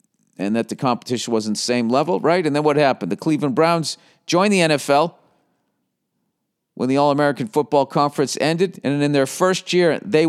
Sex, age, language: male, 50-69, English